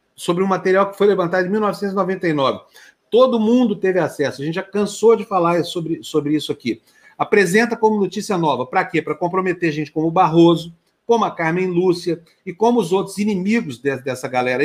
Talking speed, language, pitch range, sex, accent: 190 wpm, Portuguese, 155-205 Hz, male, Brazilian